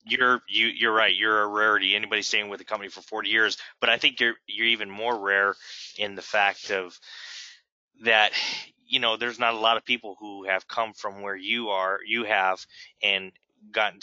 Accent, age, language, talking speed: American, 20-39, English, 200 wpm